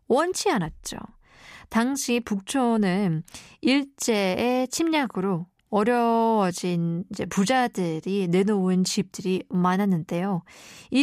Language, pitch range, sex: Korean, 185-240 Hz, female